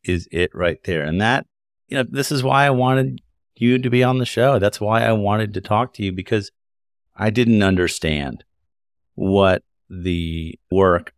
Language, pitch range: English, 80-100 Hz